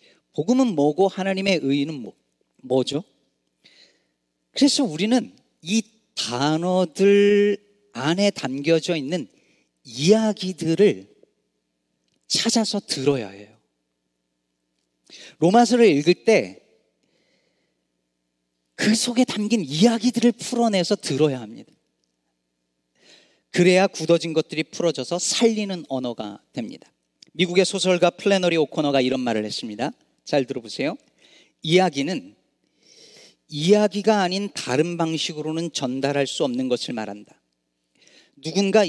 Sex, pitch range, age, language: male, 130-210 Hz, 40-59, Korean